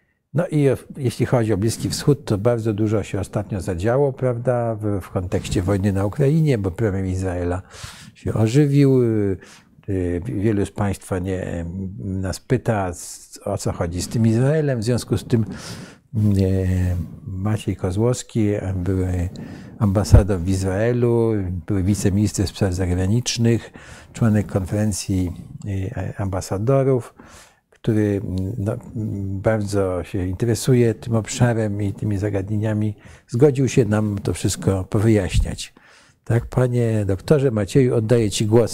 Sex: male